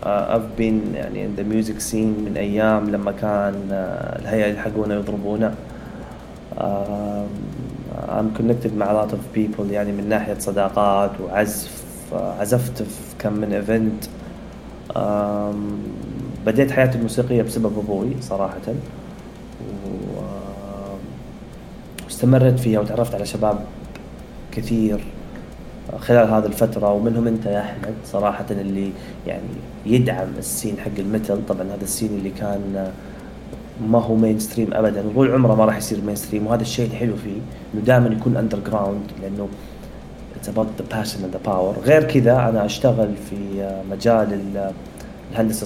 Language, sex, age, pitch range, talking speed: Arabic, male, 20-39, 100-115 Hz, 120 wpm